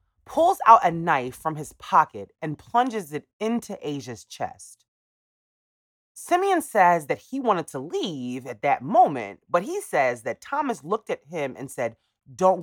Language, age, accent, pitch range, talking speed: English, 30-49, American, 145-240 Hz, 160 wpm